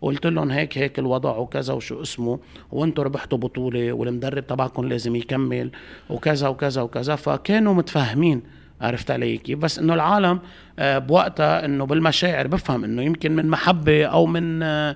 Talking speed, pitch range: 140 wpm, 130-165 Hz